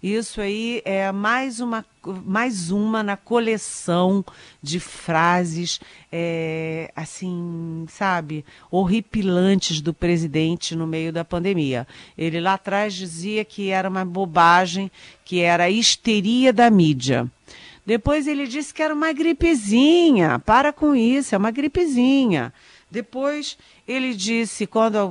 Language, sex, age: Portuguese, female, 50-69